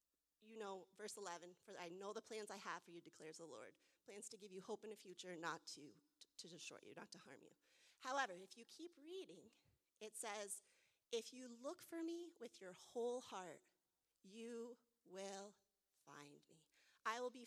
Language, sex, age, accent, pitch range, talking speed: English, female, 30-49, American, 190-245 Hz, 195 wpm